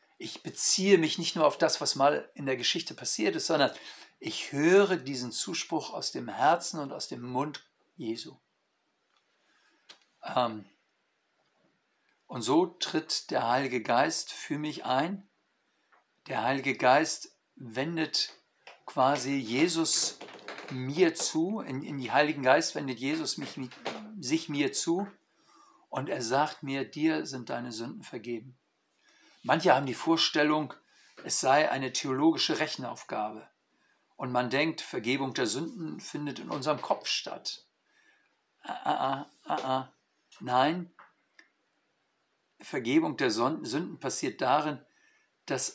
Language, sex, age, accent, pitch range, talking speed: German, male, 50-69, German, 130-180 Hz, 125 wpm